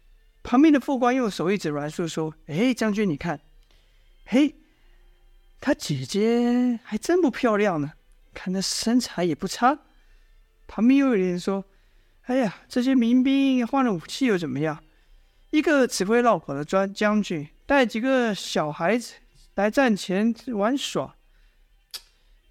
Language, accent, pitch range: Chinese, native, 170-245 Hz